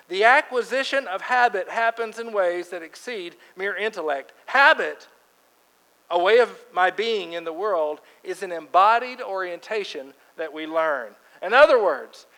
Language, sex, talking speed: English, male, 145 wpm